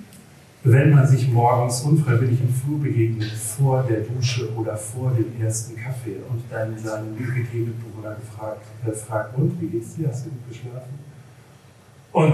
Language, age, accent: German, 40-59, German